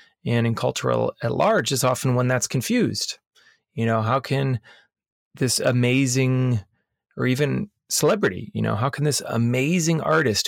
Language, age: English, 30-49